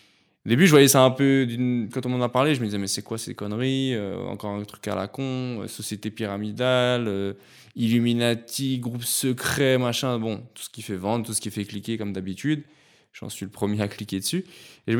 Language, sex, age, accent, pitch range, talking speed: French, male, 20-39, French, 105-130 Hz, 230 wpm